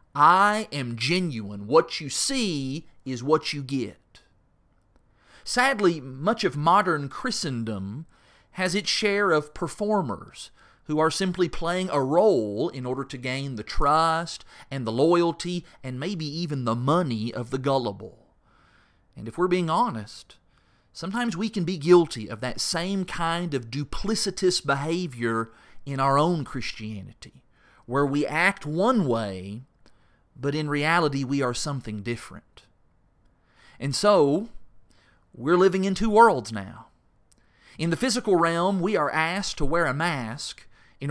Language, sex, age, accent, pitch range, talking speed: English, male, 40-59, American, 120-180 Hz, 140 wpm